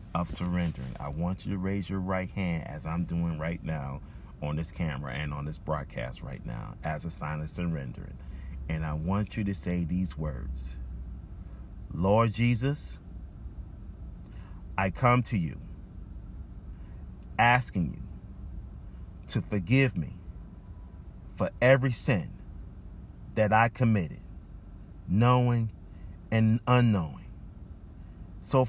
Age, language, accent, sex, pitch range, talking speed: 40-59, English, American, male, 85-130 Hz, 120 wpm